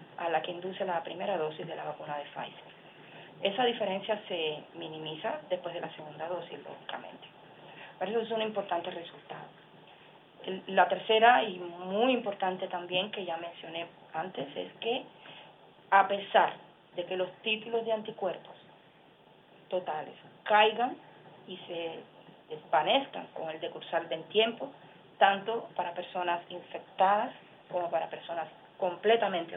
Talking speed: 135 wpm